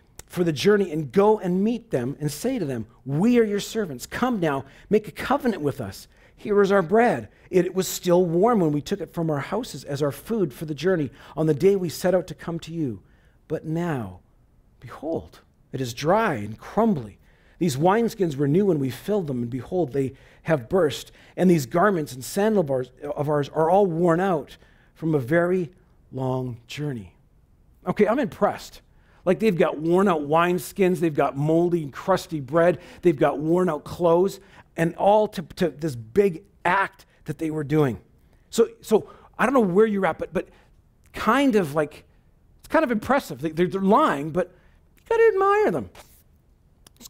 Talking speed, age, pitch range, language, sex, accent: 190 wpm, 40-59, 145-195 Hz, English, male, American